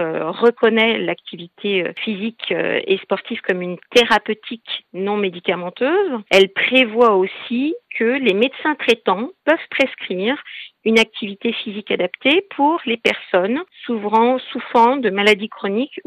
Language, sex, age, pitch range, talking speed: French, female, 50-69, 195-250 Hz, 115 wpm